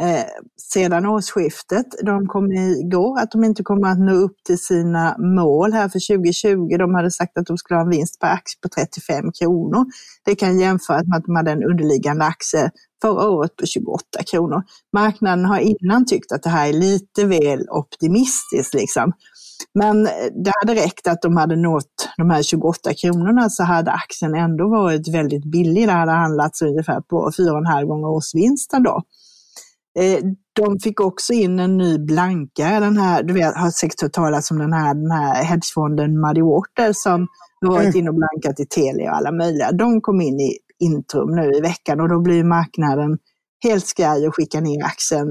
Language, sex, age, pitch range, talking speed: Swedish, female, 30-49, 160-205 Hz, 185 wpm